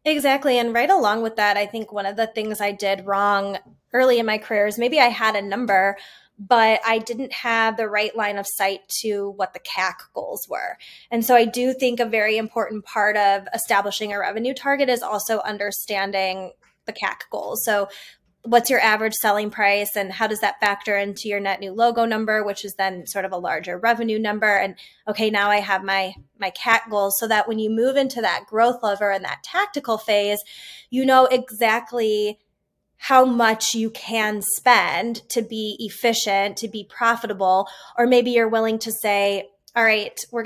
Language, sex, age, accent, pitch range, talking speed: English, female, 20-39, American, 200-230 Hz, 195 wpm